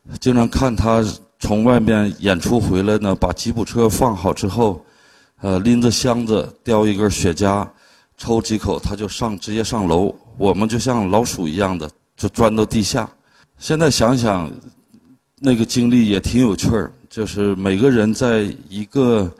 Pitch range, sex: 100-125 Hz, male